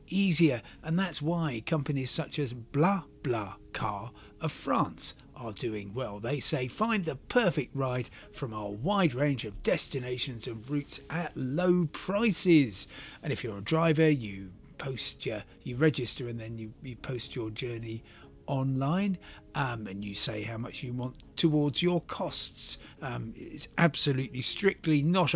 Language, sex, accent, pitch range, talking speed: English, male, British, 115-165 Hz, 155 wpm